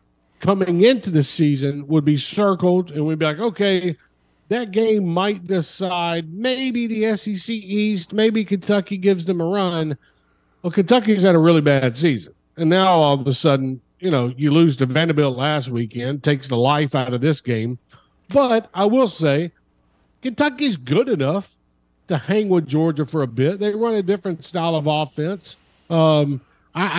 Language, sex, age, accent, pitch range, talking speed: English, male, 50-69, American, 140-190 Hz, 170 wpm